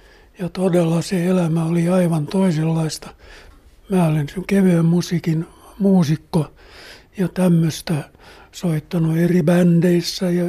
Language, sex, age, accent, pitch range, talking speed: Finnish, male, 60-79, native, 160-190 Hz, 105 wpm